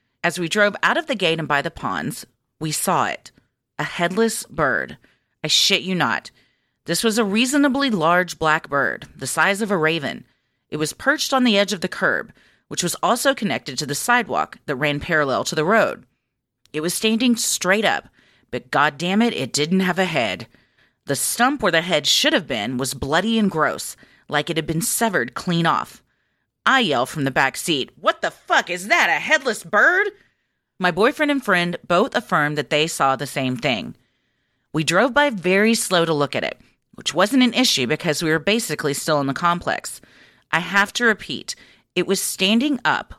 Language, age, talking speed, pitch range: English, 30-49, 195 wpm, 150-215 Hz